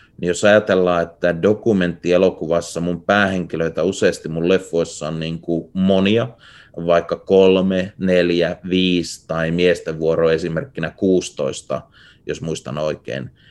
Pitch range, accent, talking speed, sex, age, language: 85-100 Hz, native, 115 wpm, male, 30-49, Finnish